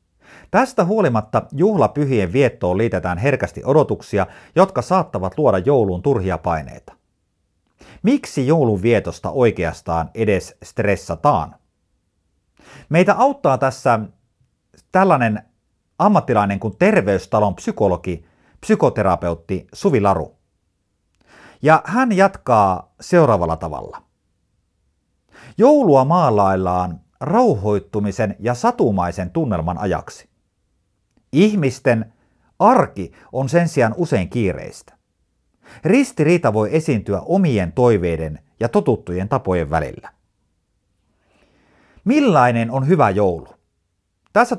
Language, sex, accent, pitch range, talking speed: Finnish, male, native, 90-140 Hz, 85 wpm